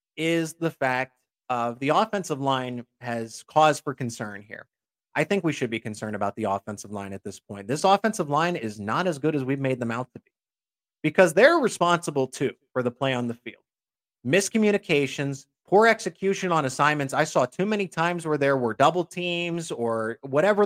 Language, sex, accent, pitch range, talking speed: English, male, American, 125-160 Hz, 190 wpm